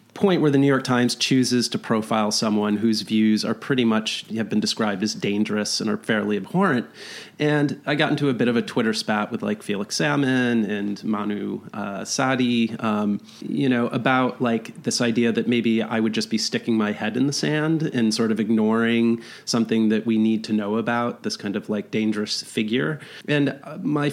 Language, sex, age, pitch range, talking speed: English, male, 30-49, 105-125 Hz, 200 wpm